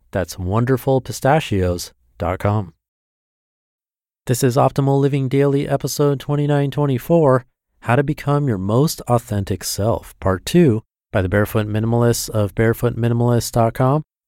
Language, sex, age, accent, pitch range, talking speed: English, male, 30-49, American, 100-125 Hz, 100 wpm